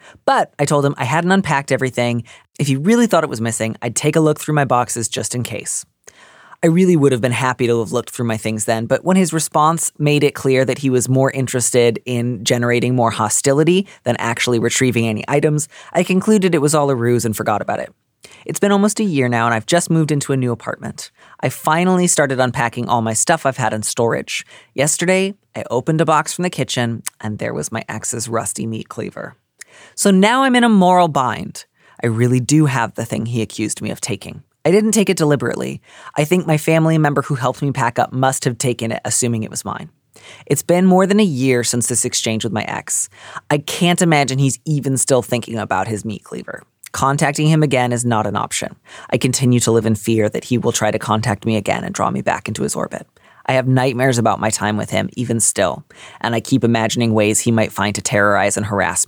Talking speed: 230 wpm